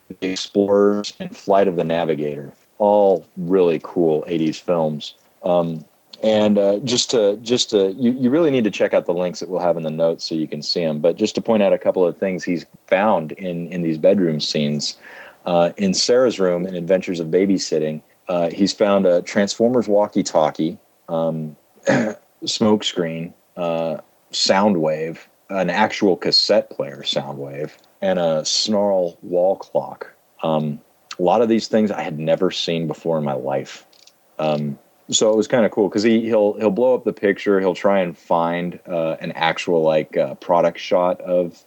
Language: English